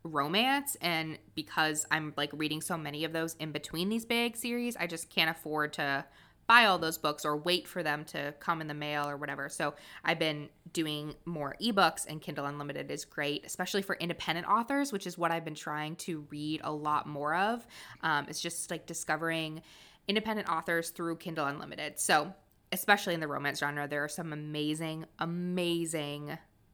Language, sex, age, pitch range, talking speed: English, female, 20-39, 150-175 Hz, 185 wpm